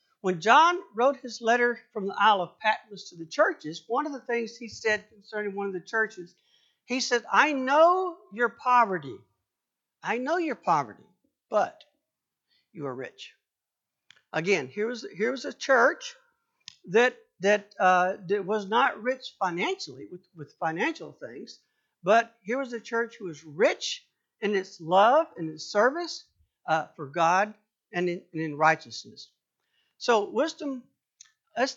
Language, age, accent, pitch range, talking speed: English, 60-79, American, 190-255 Hz, 155 wpm